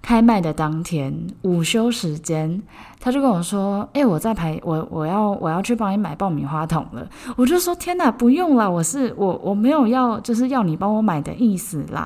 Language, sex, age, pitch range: Chinese, female, 20-39, 160-210 Hz